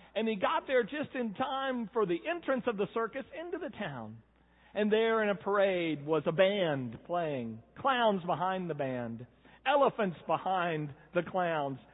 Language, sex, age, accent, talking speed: English, male, 50-69, American, 165 wpm